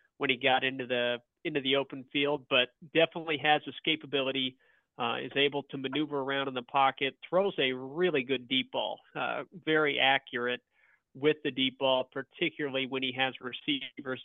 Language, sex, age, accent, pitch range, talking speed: English, male, 40-59, American, 125-145 Hz, 175 wpm